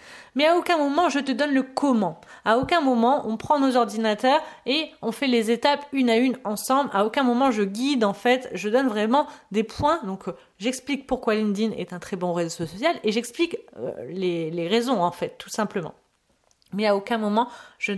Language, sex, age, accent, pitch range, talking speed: French, female, 30-49, French, 195-260 Hz, 205 wpm